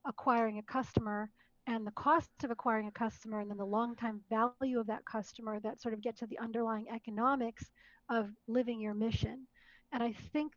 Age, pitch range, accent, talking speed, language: 40-59, 215-245 Hz, American, 195 wpm, English